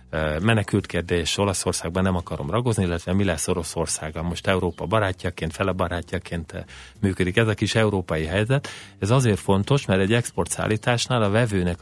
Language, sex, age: Hungarian, male, 30-49